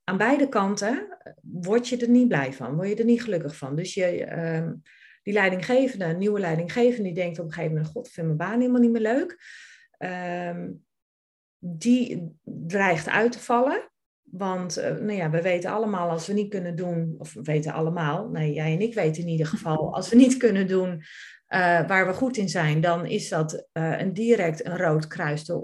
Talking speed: 180 wpm